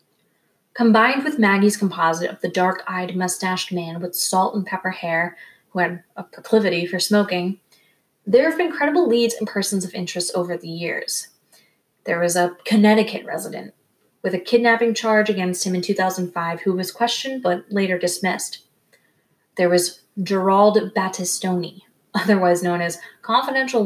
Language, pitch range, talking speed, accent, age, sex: English, 175-215 Hz, 150 wpm, American, 20-39, female